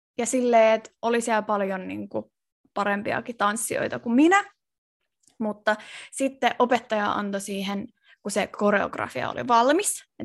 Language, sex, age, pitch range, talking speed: Finnish, female, 20-39, 205-250 Hz, 135 wpm